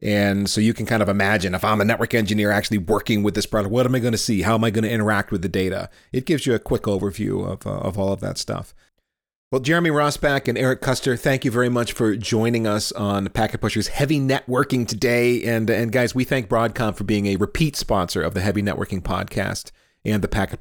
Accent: American